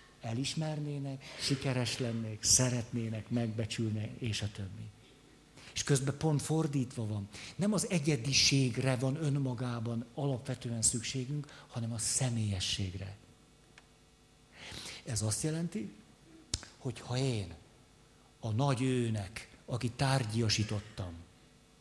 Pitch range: 110-135 Hz